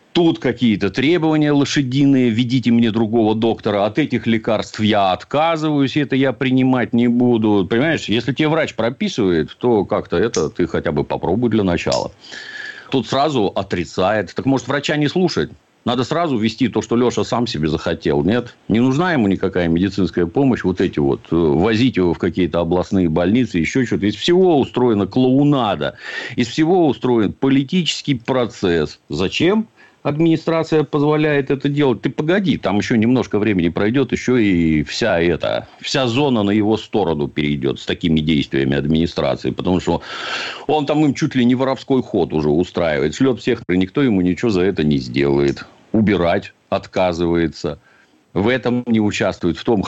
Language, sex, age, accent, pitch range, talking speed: Russian, male, 50-69, native, 90-135 Hz, 160 wpm